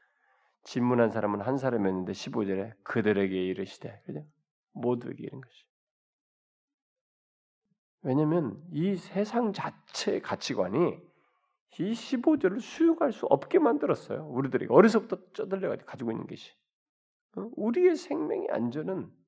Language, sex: Korean, male